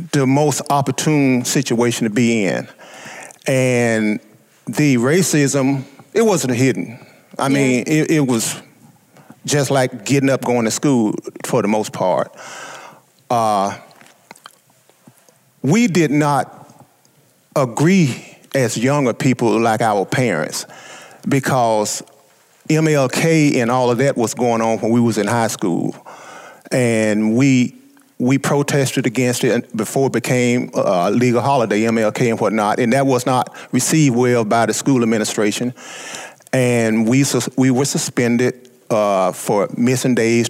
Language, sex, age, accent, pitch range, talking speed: English, male, 40-59, American, 115-140 Hz, 130 wpm